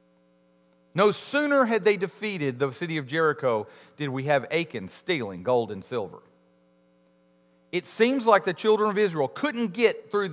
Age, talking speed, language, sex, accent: 40-59, 155 wpm, English, male, American